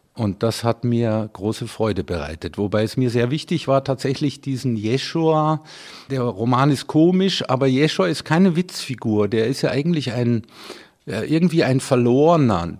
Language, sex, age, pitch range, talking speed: German, male, 50-69, 110-145 Hz, 155 wpm